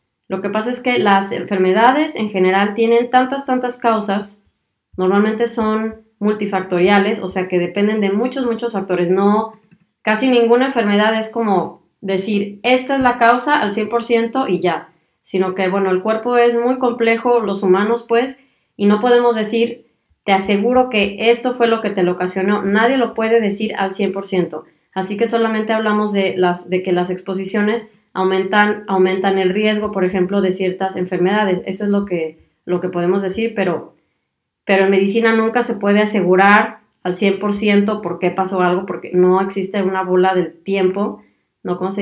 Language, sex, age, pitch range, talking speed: Spanish, female, 20-39, 190-230 Hz, 170 wpm